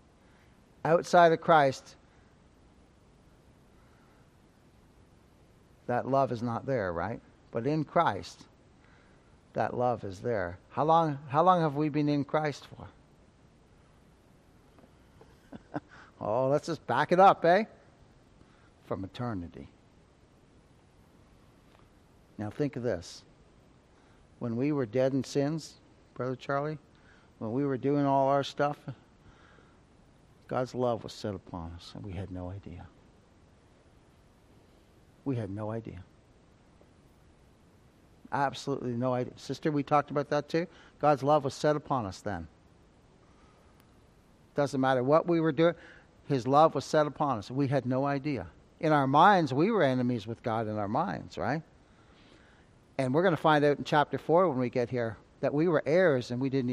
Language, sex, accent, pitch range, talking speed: English, male, American, 110-145 Hz, 140 wpm